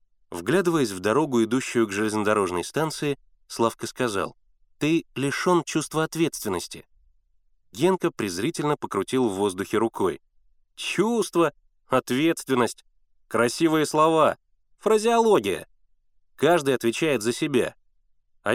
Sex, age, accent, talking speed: male, 30-49, native, 95 wpm